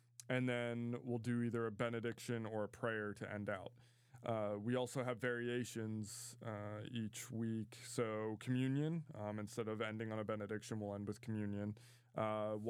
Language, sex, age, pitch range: English, male, 20-39, 110-125 Hz